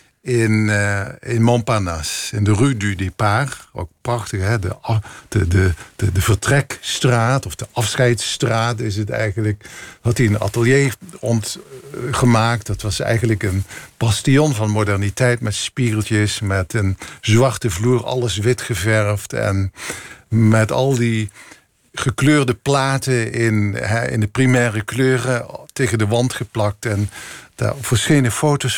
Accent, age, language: Dutch, 50-69, Dutch